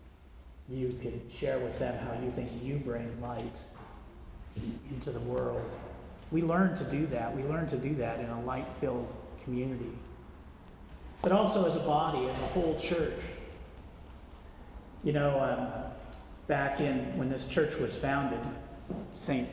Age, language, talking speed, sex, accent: 40-59, English, 150 wpm, male, American